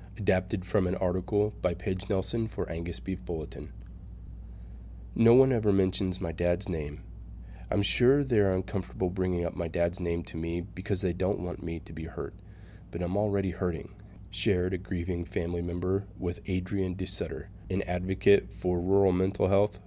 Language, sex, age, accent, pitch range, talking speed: English, male, 30-49, American, 90-100 Hz, 165 wpm